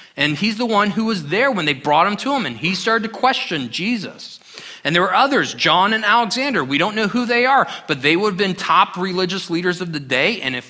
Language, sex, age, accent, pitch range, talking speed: English, male, 30-49, American, 145-205 Hz, 250 wpm